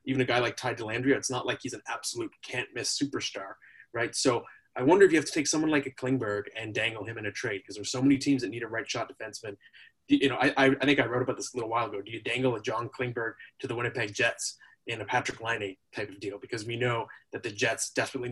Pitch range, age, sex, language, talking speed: 125-155 Hz, 20-39, male, English, 260 wpm